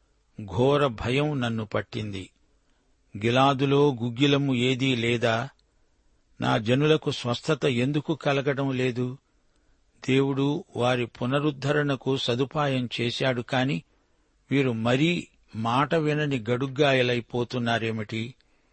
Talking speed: 80 wpm